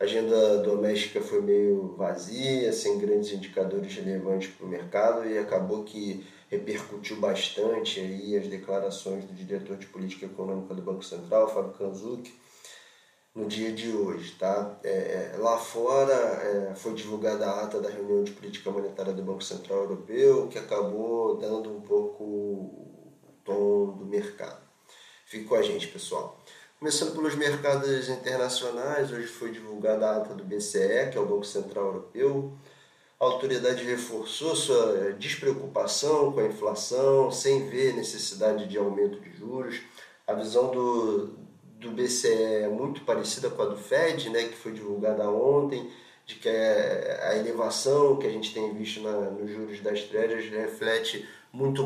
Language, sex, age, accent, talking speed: Portuguese, male, 20-39, Brazilian, 155 wpm